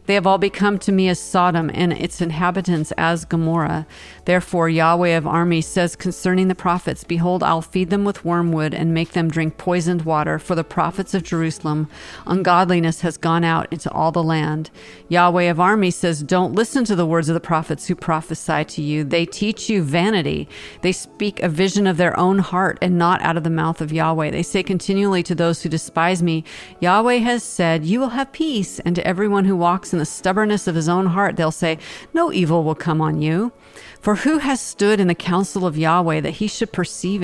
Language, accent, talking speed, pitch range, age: English, American, 210 wpm, 165-190 Hz, 40-59